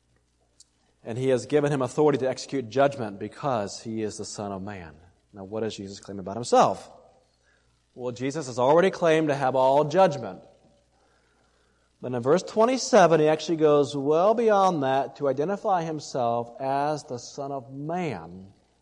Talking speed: 160 wpm